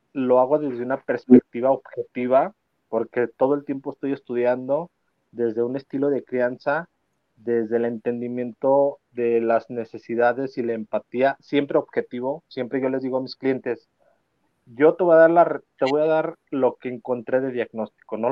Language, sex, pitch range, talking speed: Spanish, male, 115-140 Hz, 165 wpm